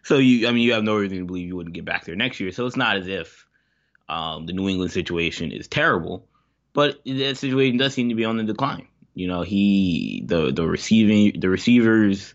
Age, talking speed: 20-39, 230 wpm